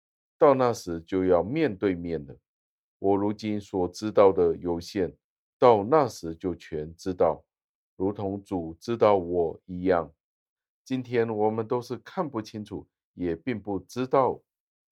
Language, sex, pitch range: Chinese, male, 90-110 Hz